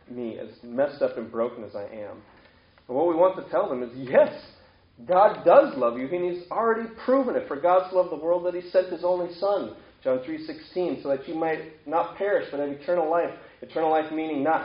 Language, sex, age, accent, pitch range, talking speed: English, male, 30-49, American, 140-185 Hz, 225 wpm